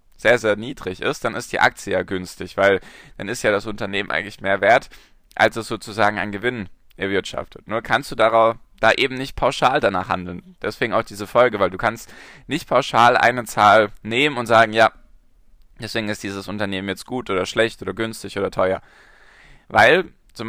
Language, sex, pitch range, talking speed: German, male, 95-115 Hz, 185 wpm